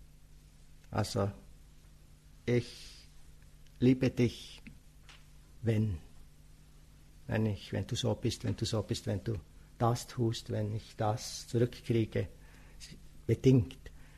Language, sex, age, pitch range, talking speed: English, male, 60-79, 95-130 Hz, 100 wpm